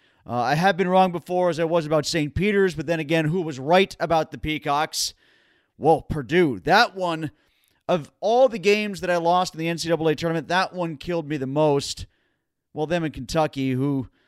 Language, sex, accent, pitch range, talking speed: English, male, American, 150-180 Hz, 200 wpm